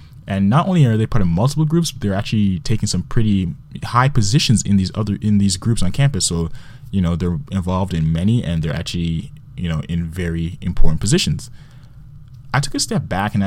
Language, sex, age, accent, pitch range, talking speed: English, male, 20-39, American, 95-140 Hz, 210 wpm